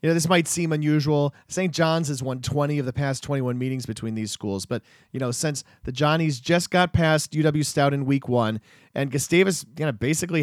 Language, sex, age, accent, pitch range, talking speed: English, male, 40-59, American, 125-160 Hz, 220 wpm